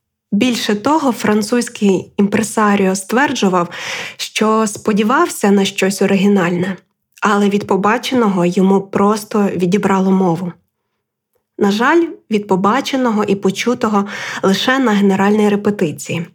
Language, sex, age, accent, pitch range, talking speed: Ukrainian, female, 20-39, native, 190-225 Hz, 100 wpm